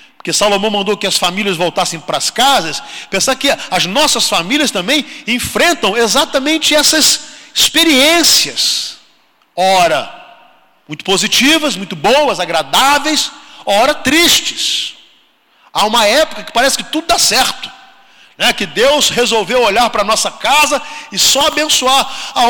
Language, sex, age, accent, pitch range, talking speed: Portuguese, male, 40-59, Brazilian, 200-290 Hz, 135 wpm